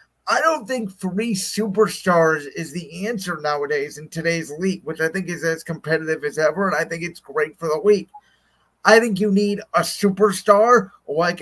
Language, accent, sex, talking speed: English, American, male, 185 wpm